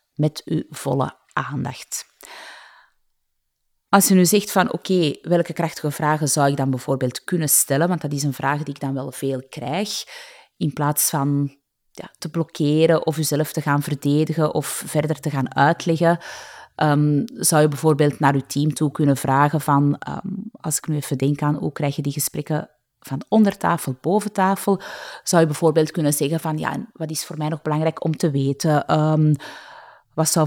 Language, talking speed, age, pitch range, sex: Dutch, 185 wpm, 30-49, 145-170 Hz, female